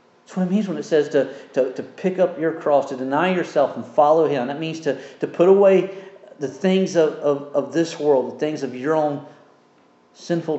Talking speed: 215 wpm